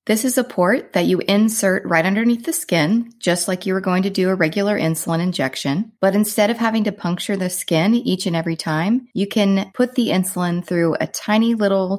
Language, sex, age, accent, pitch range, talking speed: English, female, 30-49, American, 160-205 Hz, 215 wpm